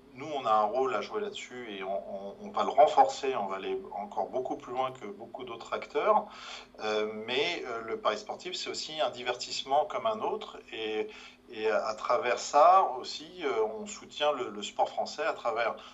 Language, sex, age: French, male, 40-59